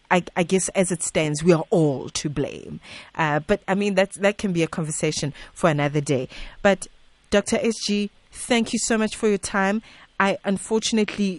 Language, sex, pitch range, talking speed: English, female, 155-195 Hz, 185 wpm